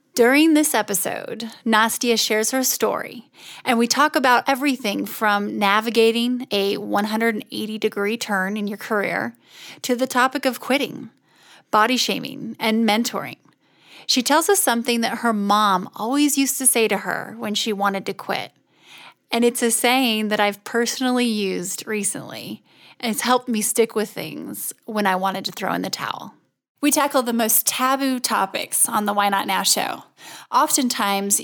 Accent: American